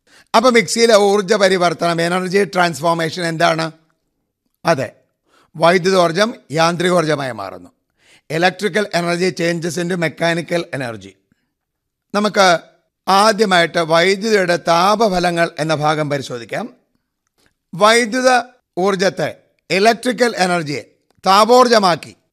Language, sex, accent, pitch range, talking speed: Malayalam, male, native, 165-205 Hz, 80 wpm